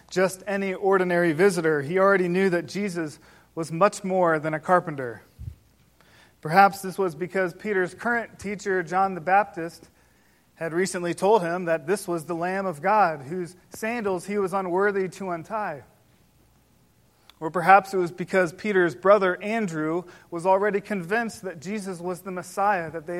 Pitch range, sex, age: 160-195 Hz, male, 40-59